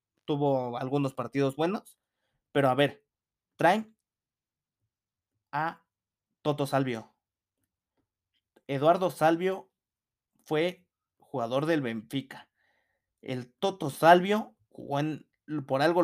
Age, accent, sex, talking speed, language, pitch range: 30-49, Mexican, male, 90 wpm, Spanish, 125-165 Hz